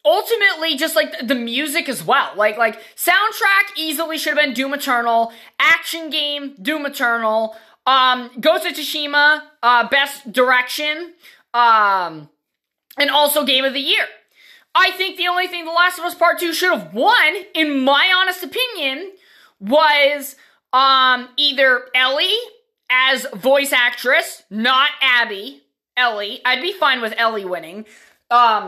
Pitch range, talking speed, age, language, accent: 250-325 Hz, 145 wpm, 20-39, English, American